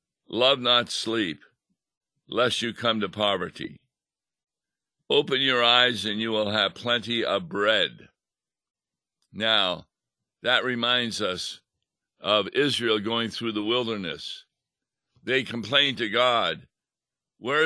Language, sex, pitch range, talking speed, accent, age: English, male, 105-125 Hz, 110 wpm, American, 60-79